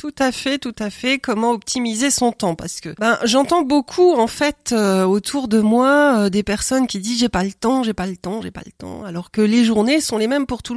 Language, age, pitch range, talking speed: French, 40-59, 210-250 Hz, 265 wpm